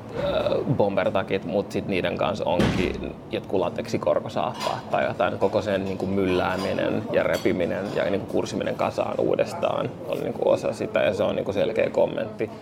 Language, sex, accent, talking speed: Finnish, male, native, 130 wpm